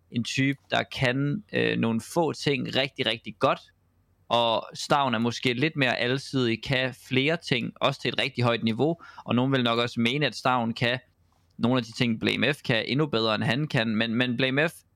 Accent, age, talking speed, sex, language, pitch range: native, 20-39, 200 wpm, male, Danish, 115-135 Hz